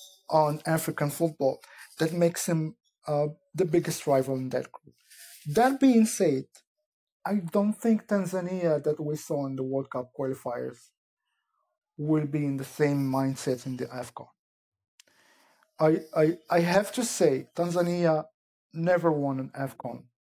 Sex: male